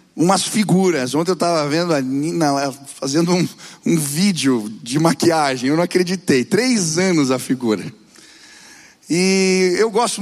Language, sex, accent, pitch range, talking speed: Portuguese, male, Brazilian, 160-200 Hz, 125 wpm